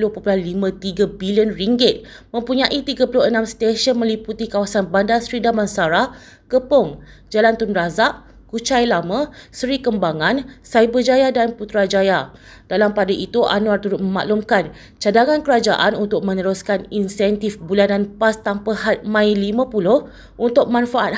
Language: Malay